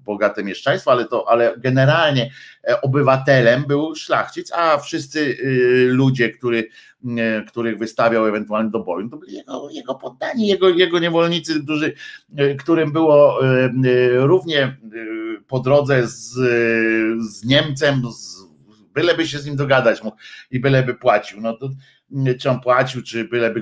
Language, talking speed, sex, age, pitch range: Polish, 150 wpm, male, 50-69, 110-140 Hz